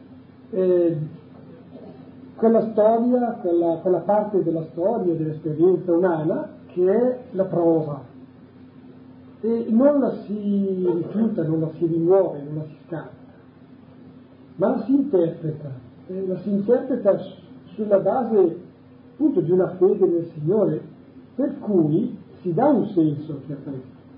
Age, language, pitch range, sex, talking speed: 40-59, Italian, 150-210 Hz, male, 115 wpm